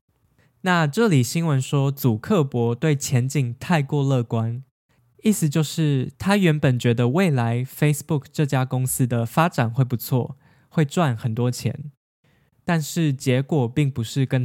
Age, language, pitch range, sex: 10-29, Chinese, 125-150 Hz, male